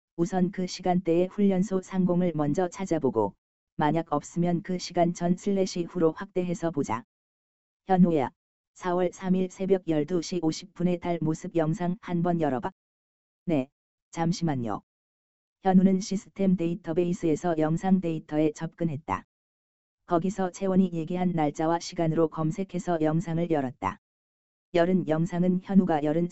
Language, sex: Korean, female